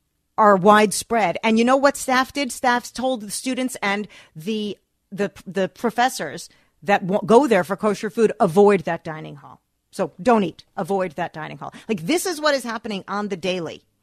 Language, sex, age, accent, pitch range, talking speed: English, female, 40-59, American, 180-215 Hz, 180 wpm